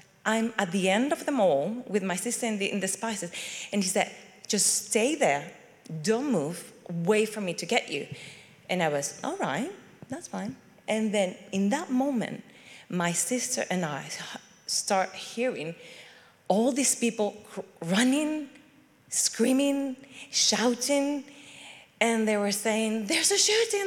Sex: female